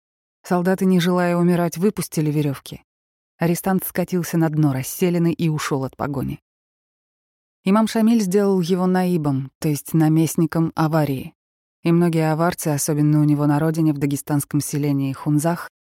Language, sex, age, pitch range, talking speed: Russian, female, 20-39, 145-170 Hz, 135 wpm